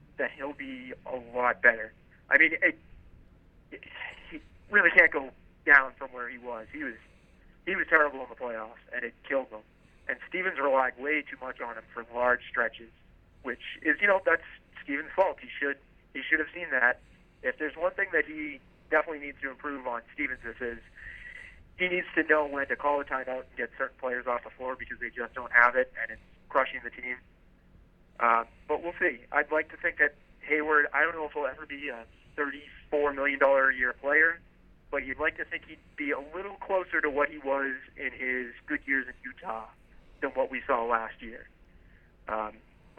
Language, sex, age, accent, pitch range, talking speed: English, male, 40-59, American, 120-155 Hz, 200 wpm